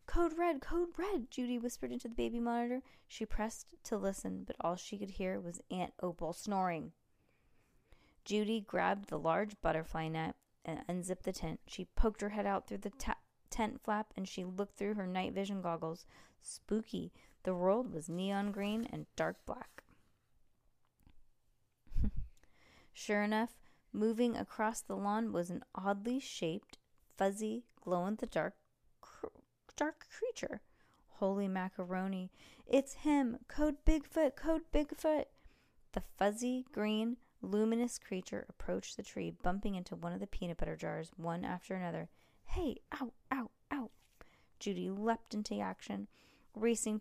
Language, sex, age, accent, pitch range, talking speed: English, female, 20-39, American, 185-235 Hz, 140 wpm